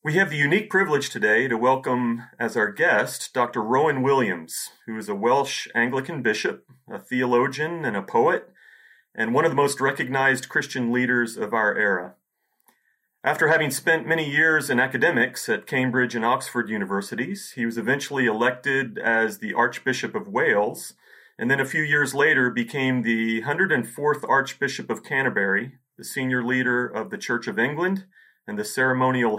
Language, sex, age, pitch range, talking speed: English, male, 40-59, 120-155 Hz, 165 wpm